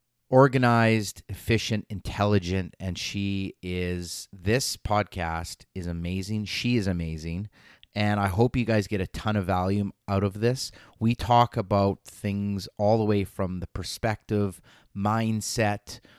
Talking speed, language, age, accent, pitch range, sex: 135 wpm, English, 30-49, American, 95-115 Hz, male